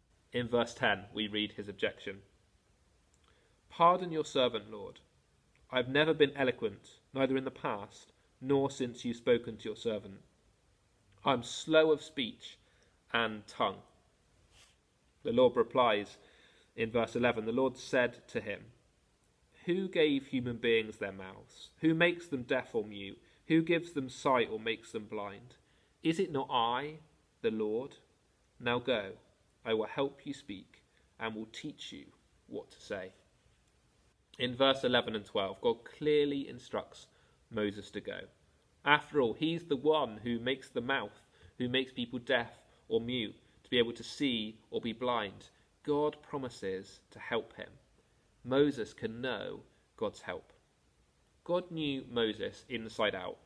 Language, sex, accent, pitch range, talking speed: English, male, British, 110-145 Hz, 150 wpm